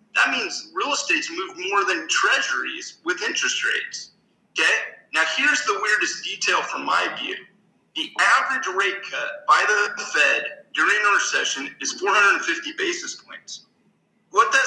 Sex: male